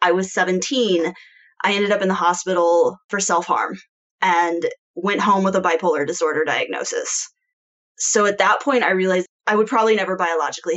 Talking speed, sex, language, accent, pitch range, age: 165 wpm, female, English, American, 175-225 Hz, 20-39